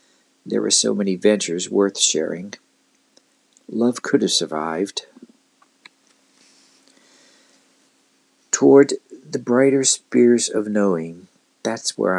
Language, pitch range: English, 100-165 Hz